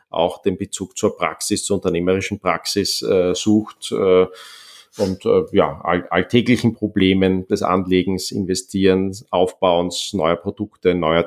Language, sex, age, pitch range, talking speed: German, male, 40-59, 90-110 Hz, 130 wpm